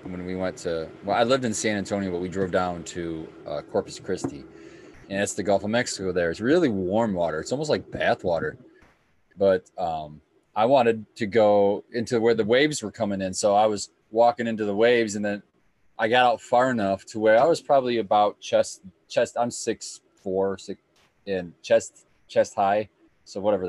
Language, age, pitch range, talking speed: English, 20-39, 100-130 Hz, 200 wpm